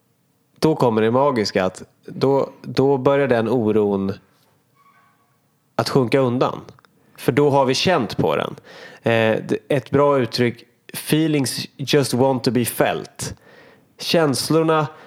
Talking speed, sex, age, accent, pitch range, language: 120 wpm, male, 30-49, native, 115-145 Hz, Swedish